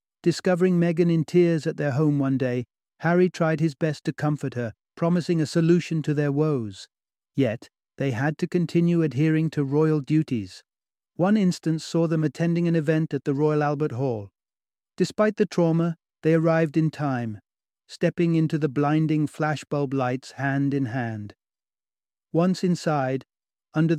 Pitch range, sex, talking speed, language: 130-160 Hz, male, 155 wpm, English